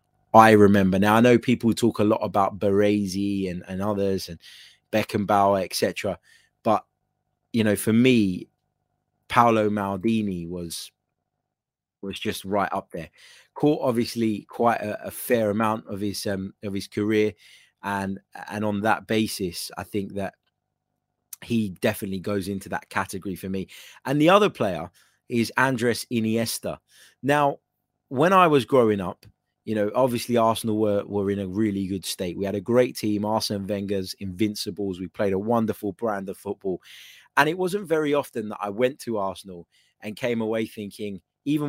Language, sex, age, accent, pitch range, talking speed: English, male, 20-39, British, 95-115 Hz, 165 wpm